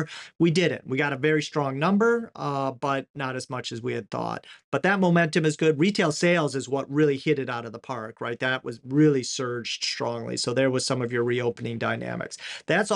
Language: English